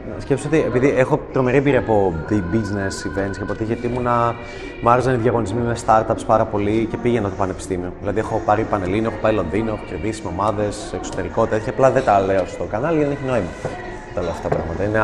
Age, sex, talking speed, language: 20-39, male, 210 wpm, Greek